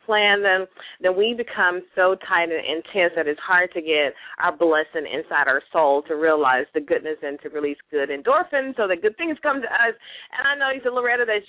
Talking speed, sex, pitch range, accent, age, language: 220 wpm, female, 160-200 Hz, American, 30-49, English